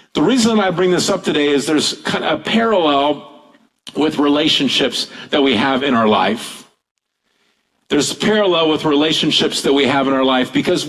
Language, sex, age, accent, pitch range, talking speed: English, male, 50-69, American, 145-185 Hz, 180 wpm